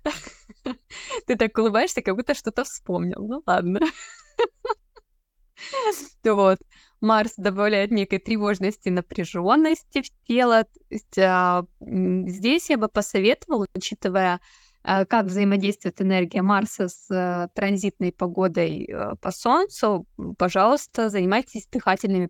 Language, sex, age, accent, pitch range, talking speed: Russian, female, 20-39, native, 185-230 Hz, 105 wpm